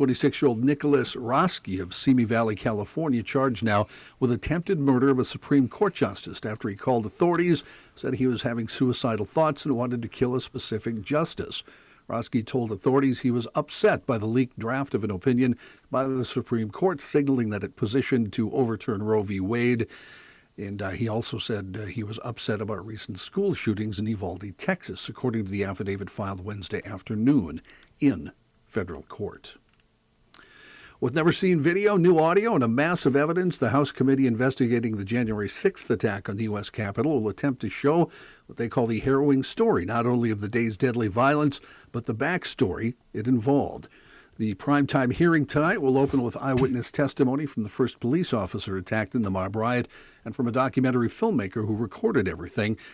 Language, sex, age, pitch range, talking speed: English, male, 60-79, 110-140 Hz, 180 wpm